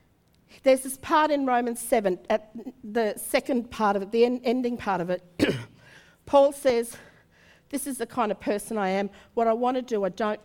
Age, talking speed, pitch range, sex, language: 50-69, 200 wpm, 220-280 Hz, female, English